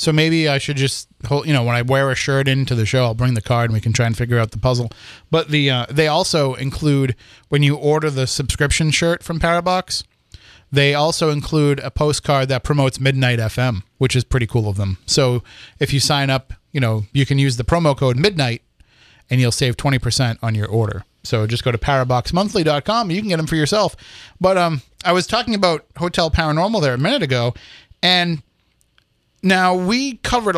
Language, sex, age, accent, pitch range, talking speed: English, male, 30-49, American, 125-155 Hz, 210 wpm